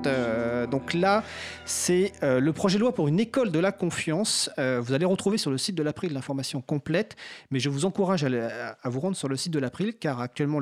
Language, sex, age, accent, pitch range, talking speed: French, male, 40-59, French, 125-170 Hz, 230 wpm